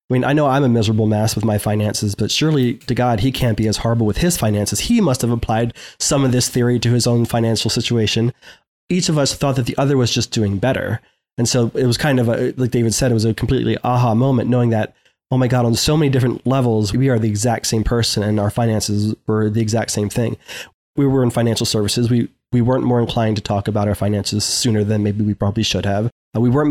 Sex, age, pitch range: male, 20-39, 110-130 Hz